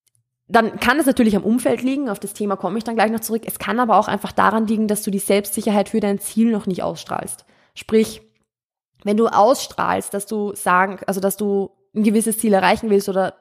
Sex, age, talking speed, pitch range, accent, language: female, 20-39, 220 wpm, 195-225 Hz, German, German